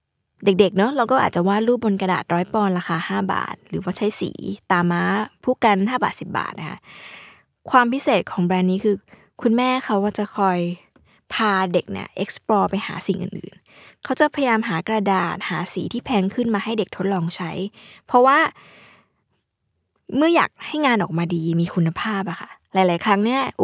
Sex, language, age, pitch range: female, Thai, 20-39, 180-230 Hz